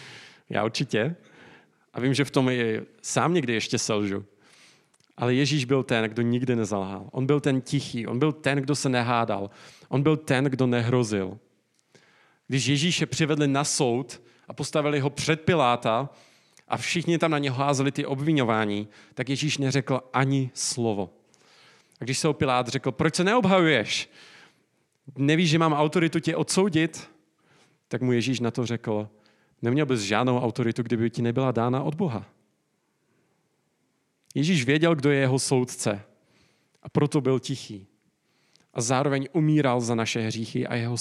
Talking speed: 155 wpm